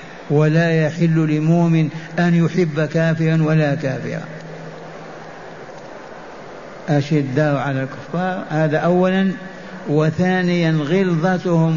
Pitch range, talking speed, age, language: 150-170 Hz, 75 wpm, 60-79, Arabic